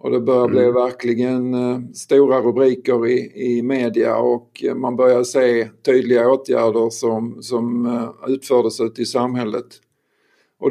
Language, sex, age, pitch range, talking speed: Swedish, male, 50-69, 120-130 Hz, 130 wpm